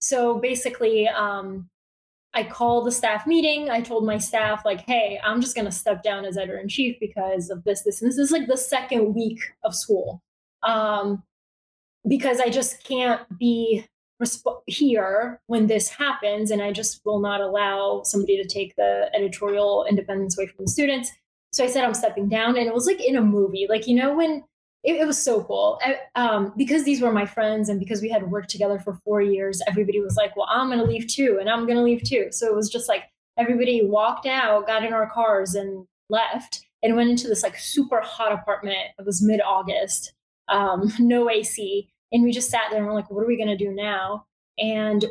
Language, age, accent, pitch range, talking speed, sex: English, 10-29, American, 205-245 Hz, 210 wpm, female